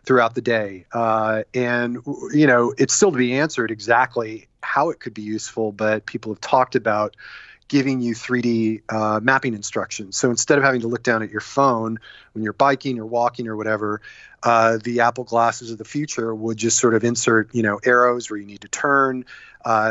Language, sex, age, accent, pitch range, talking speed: English, male, 30-49, American, 110-130 Hz, 200 wpm